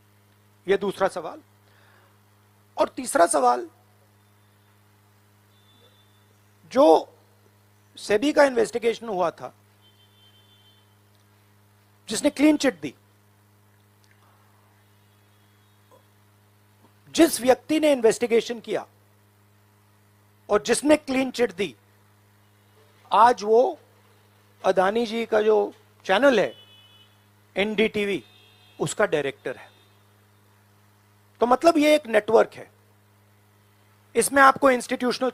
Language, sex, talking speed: Marathi, male, 75 wpm